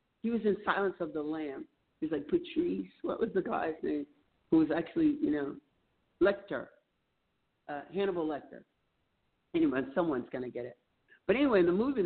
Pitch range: 180-240 Hz